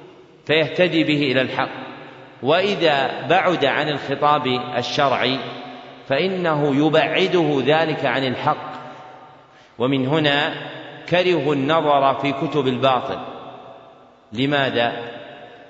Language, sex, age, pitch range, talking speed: Arabic, male, 40-59, 125-155 Hz, 85 wpm